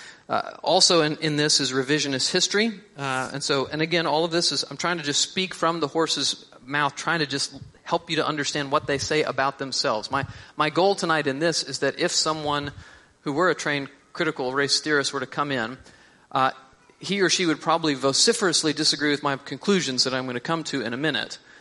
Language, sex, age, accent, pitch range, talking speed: English, male, 40-59, American, 130-155 Hz, 230 wpm